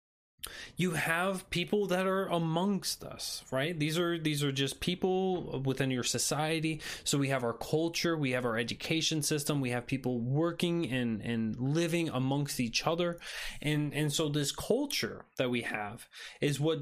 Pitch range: 130-160 Hz